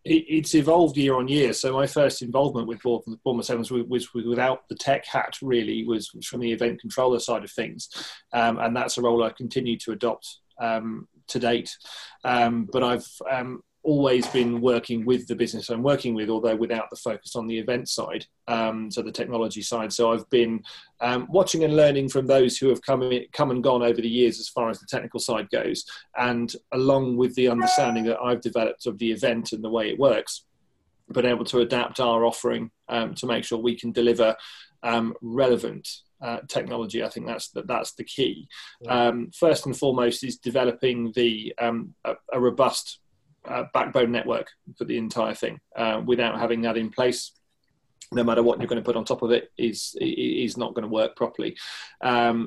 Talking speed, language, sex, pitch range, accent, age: 200 wpm, English, male, 115-125 Hz, British, 30-49